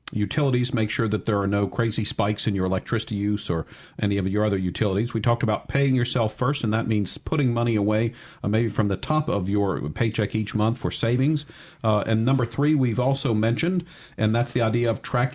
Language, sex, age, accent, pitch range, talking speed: English, male, 50-69, American, 105-135 Hz, 220 wpm